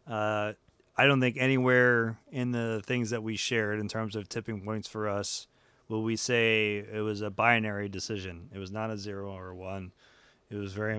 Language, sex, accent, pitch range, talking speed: English, male, American, 100-125 Hz, 200 wpm